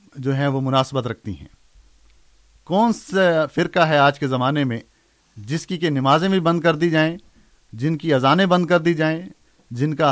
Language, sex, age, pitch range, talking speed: Urdu, male, 50-69, 130-170 Hz, 190 wpm